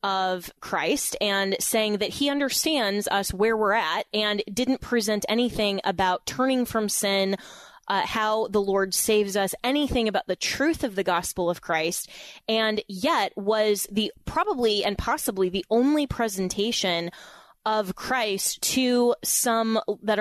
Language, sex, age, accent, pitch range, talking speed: English, female, 20-39, American, 195-240 Hz, 145 wpm